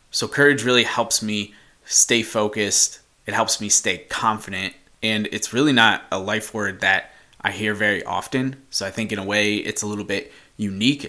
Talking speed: 190 wpm